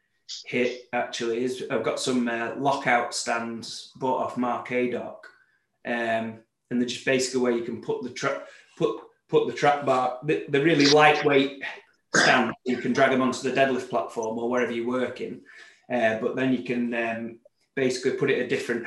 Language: English